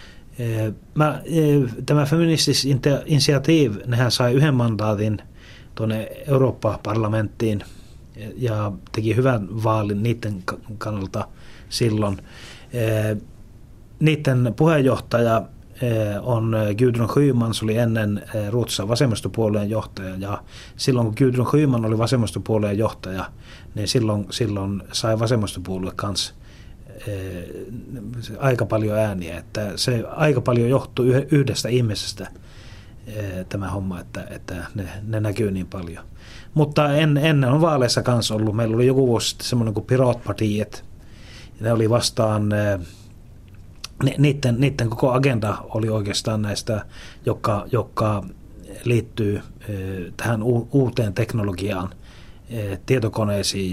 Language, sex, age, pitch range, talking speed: Finnish, male, 30-49, 100-125 Hz, 105 wpm